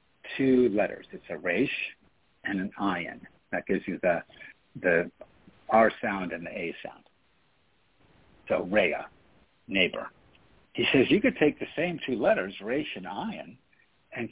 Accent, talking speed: American, 145 wpm